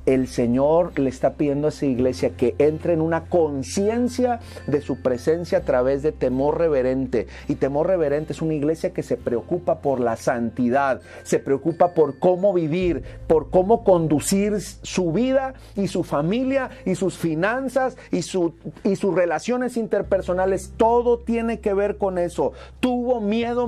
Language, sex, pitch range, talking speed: Spanish, male, 135-200 Hz, 155 wpm